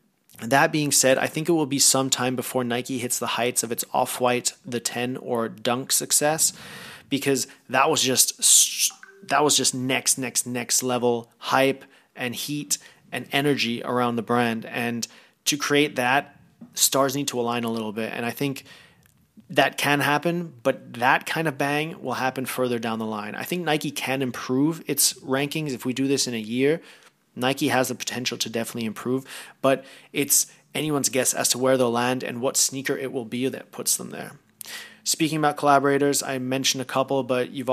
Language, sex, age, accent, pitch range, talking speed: English, male, 30-49, Canadian, 125-140 Hz, 190 wpm